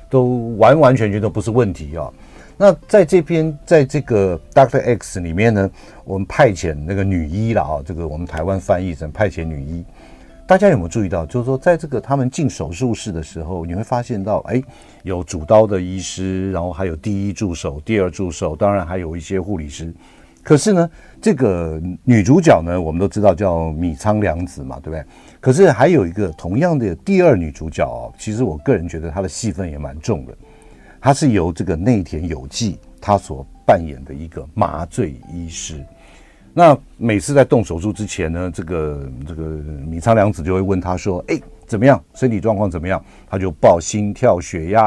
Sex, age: male, 50-69